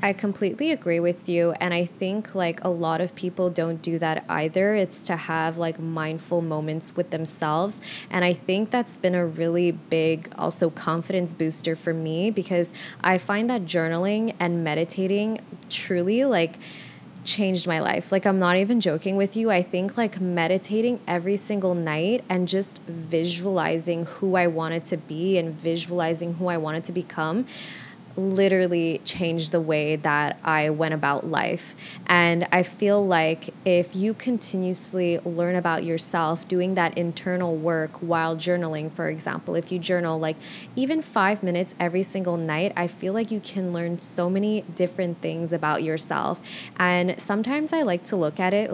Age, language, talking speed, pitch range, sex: 20-39, English, 165 wpm, 165-195 Hz, female